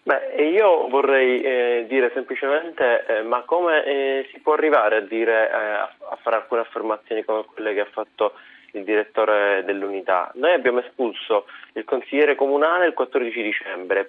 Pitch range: 120-170 Hz